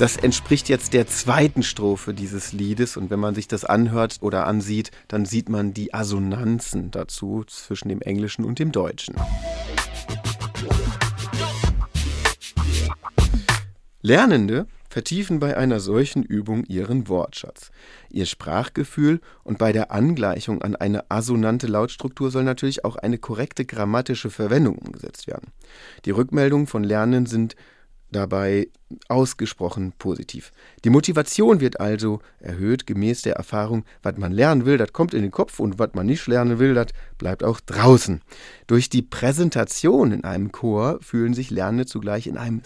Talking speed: 145 wpm